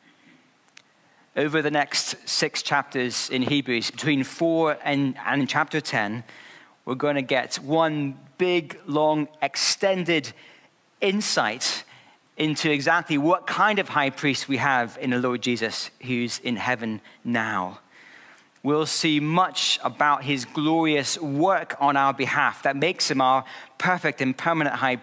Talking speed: 135 wpm